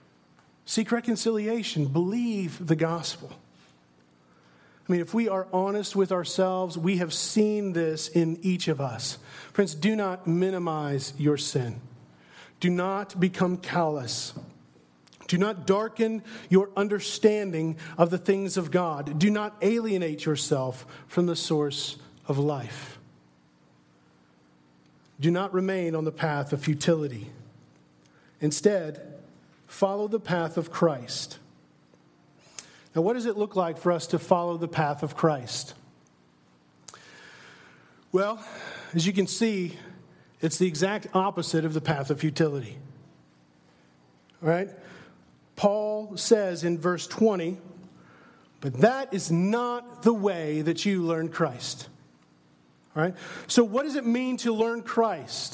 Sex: male